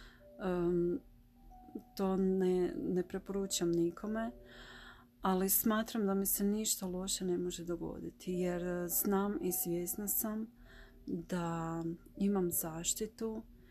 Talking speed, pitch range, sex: 105 wpm, 175-195 Hz, female